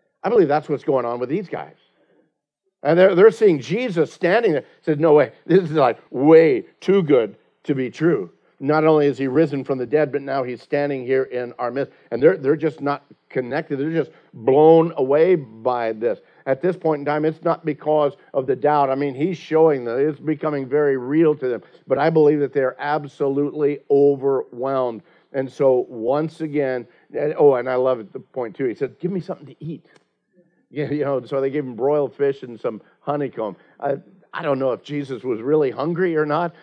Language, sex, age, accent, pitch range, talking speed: English, male, 50-69, American, 135-170 Hz, 205 wpm